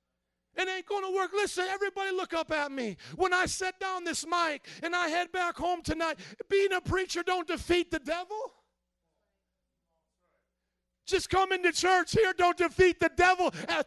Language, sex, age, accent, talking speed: English, male, 40-59, American, 175 wpm